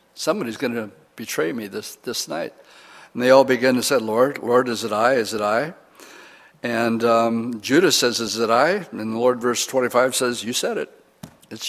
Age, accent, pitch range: 60-79, American, 115-140 Hz